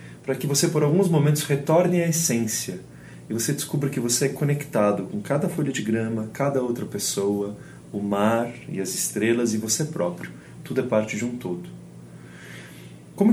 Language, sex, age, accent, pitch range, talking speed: Portuguese, male, 30-49, Brazilian, 110-165 Hz, 175 wpm